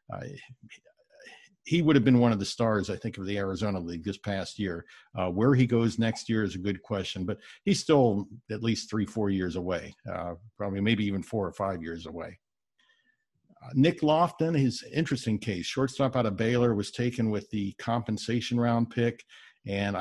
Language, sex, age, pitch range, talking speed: English, male, 50-69, 100-125 Hz, 190 wpm